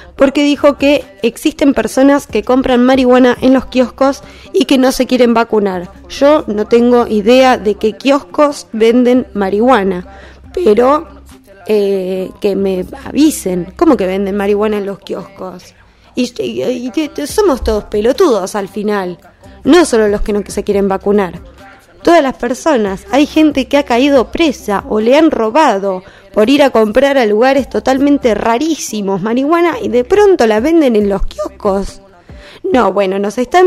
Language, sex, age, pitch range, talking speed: Spanish, female, 20-39, 200-275 Hz, 155 wpm